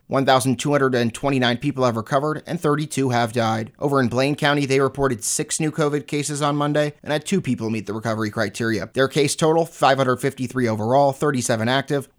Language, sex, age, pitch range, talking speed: English, male, 30-49, 125-145 Hz, 170 wpm